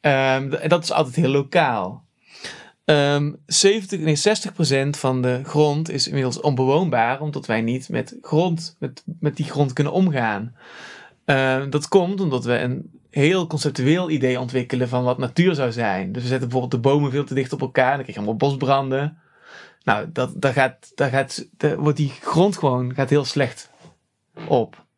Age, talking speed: 30-49, 175 wpm